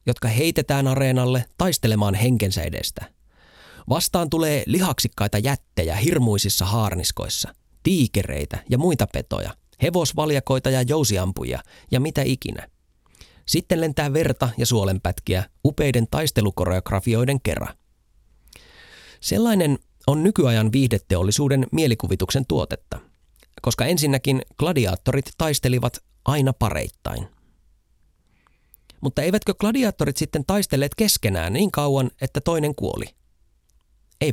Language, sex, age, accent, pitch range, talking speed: Finnish, male, 30-49, native, 105-155 Hz, 95 wpm